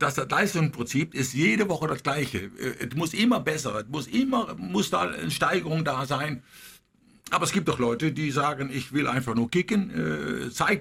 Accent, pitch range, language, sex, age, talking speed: German, 135-185 Hz, German, male, 50-69, 185 wpm